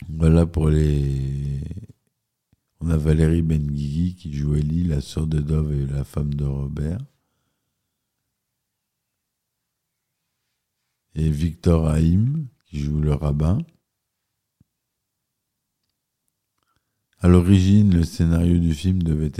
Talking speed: 105 wpm